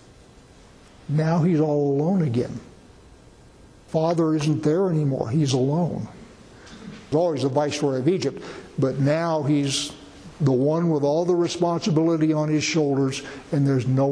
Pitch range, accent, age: 145-185 Hz, American, 60-79